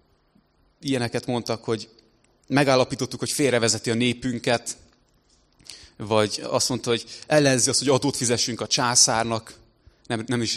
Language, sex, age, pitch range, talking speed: Hungarian, male, 20-39, 110-125 Hz, 125 wpm